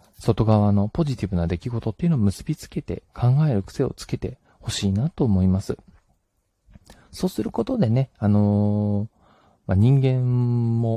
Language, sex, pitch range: Japanese, male, 95-135 Hz